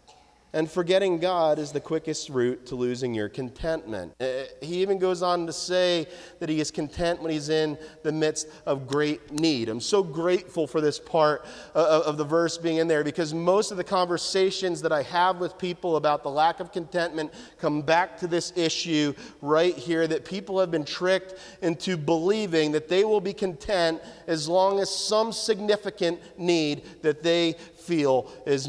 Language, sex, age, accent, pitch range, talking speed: English, male, 40-59, American, 150-185 Hz, 180 wpm